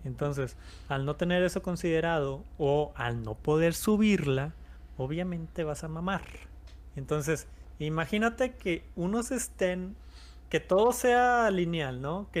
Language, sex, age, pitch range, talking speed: Spanish, male, 30-49, 130-180 Hz, 125 wpm